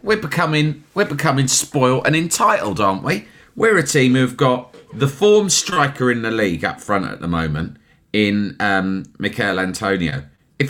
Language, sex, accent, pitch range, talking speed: English, male, British, 105-150 Hz, 170 wpm